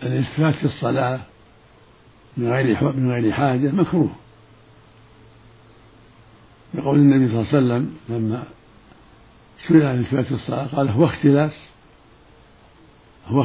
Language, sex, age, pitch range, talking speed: Arabic, male, 60-79, 105-130 Hz, 105 wpm